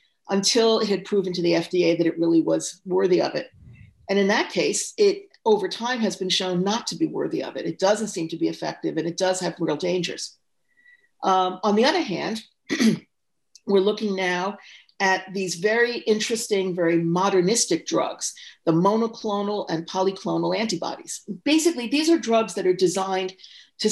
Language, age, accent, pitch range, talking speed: English, 50-69, American, 180-225 Hz, 175 wpm